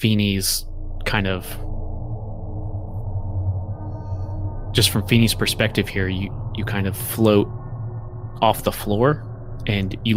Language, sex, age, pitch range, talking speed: English, male, 20-39, 95-105 Hz, 105 wpm